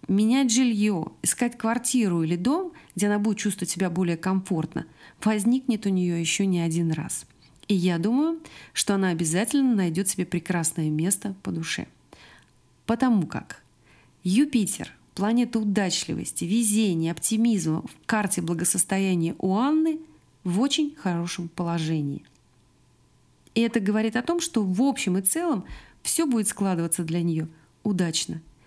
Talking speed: 135 wpm